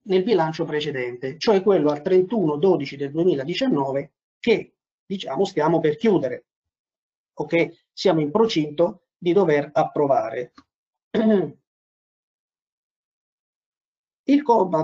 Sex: male